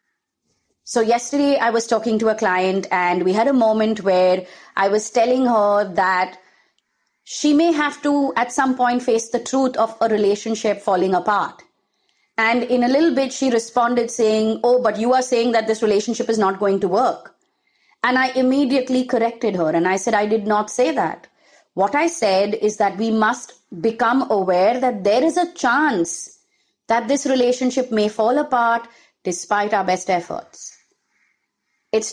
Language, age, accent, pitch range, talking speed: English, 30-49, Indian, 210-260 Hz, 175 wpm